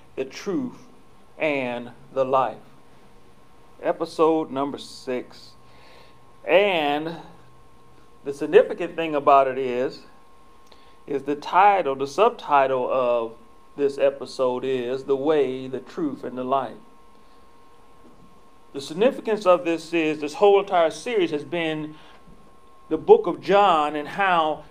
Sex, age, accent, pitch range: male, 40-59, American, 135-200 Hz